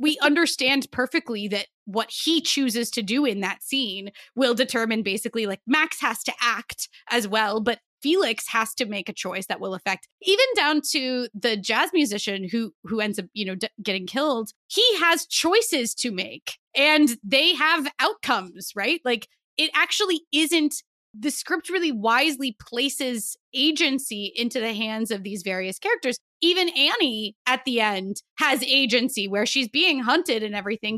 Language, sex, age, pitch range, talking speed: English, female, 20-39, 215-300 Hz, 165 wpm